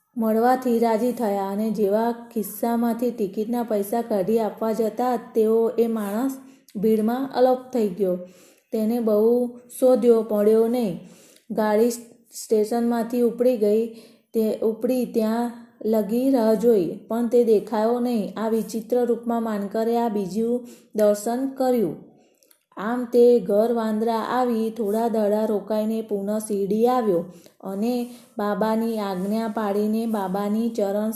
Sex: female